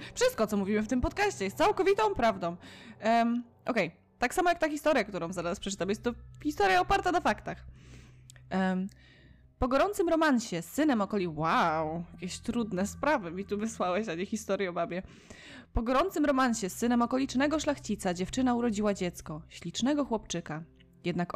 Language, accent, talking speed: Polish, native, 160 wpm